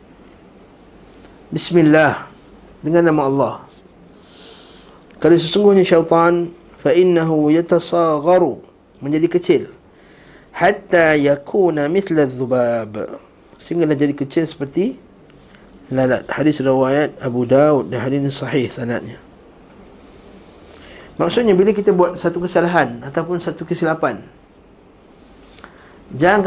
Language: Malay